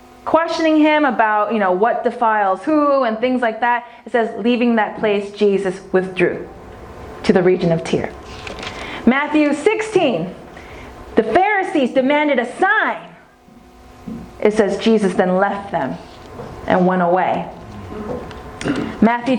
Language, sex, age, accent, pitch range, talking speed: English, female, 30-49, American, 220-315 Hz, 125 wpm